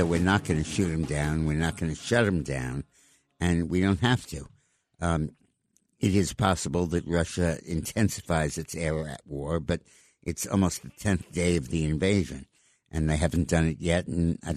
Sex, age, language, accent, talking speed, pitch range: male, 60-79, English, American, 195 wpm, 80-95 Hz